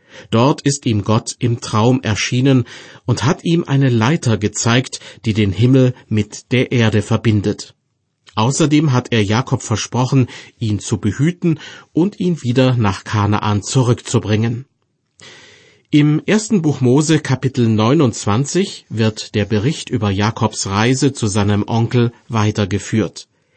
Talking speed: 125 wpm